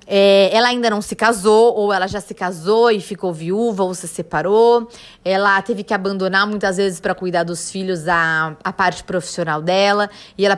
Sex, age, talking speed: female, 20-39, 185 wpm